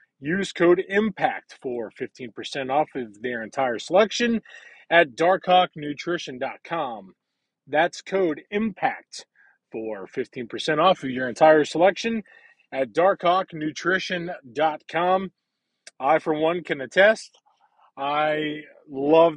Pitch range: 140-180 Hz